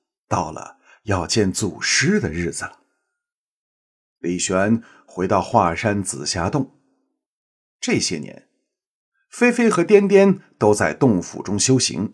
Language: Chinese